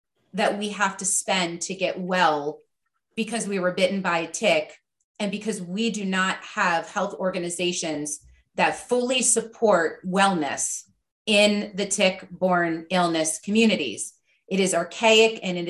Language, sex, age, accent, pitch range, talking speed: English, female, 30-49, American, 180-220 Hz, 140 wpm